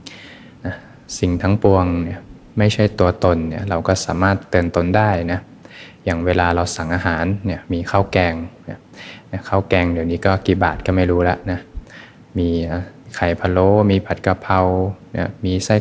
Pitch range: 85-95 Hz